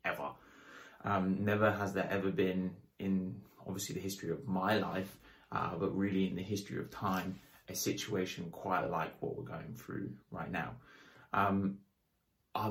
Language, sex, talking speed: English, male, 160 wpm